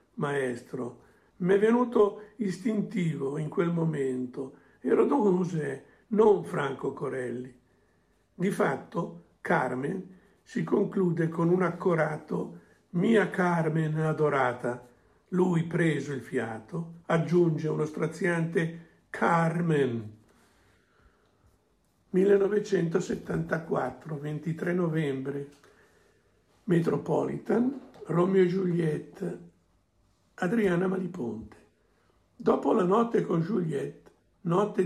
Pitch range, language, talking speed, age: 135-185 Hz, Italian, 80 wpm, 60-79